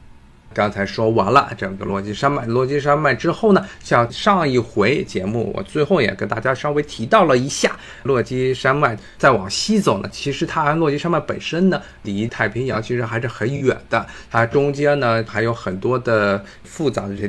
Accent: native